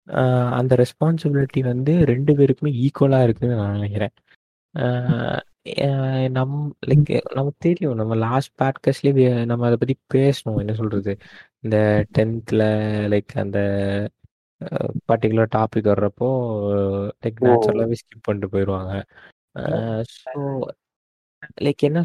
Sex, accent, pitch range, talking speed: male, native, 110-145 Hz, 65 wpm